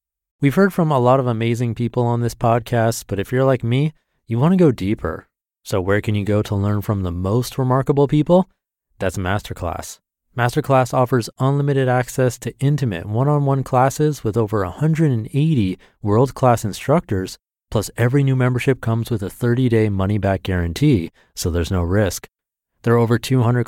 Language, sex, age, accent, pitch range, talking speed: English, male, 30-49, American, 100-130 Hz, 165 wpm